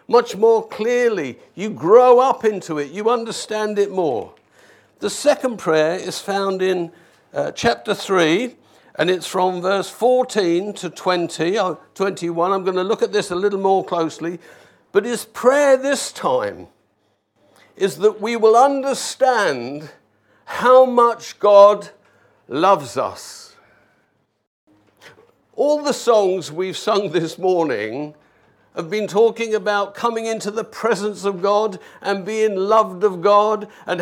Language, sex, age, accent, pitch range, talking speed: English, male, 60-79, British, 195-250 Hz, 140 wpm